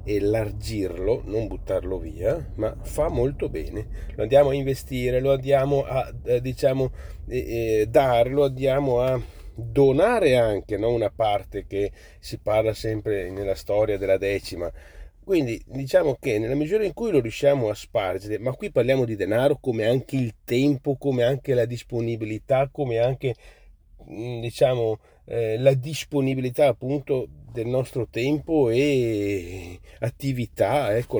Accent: native